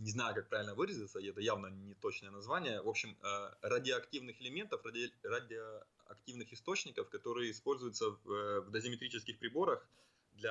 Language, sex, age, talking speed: Ukrainian, male, 20-39, 125 wpm